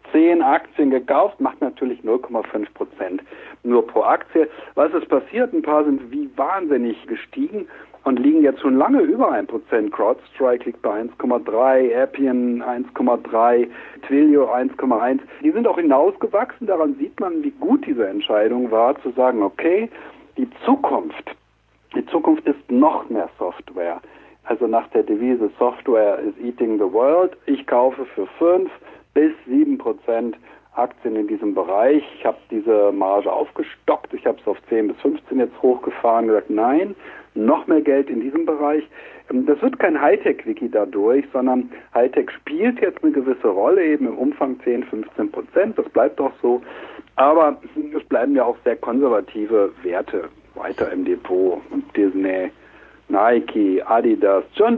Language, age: German, 60-79